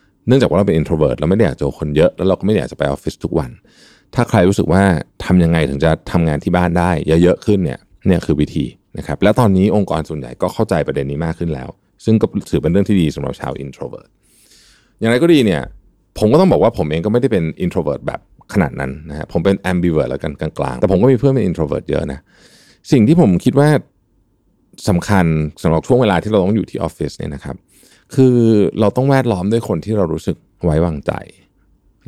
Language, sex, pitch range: Thai, male, 80-110 Hz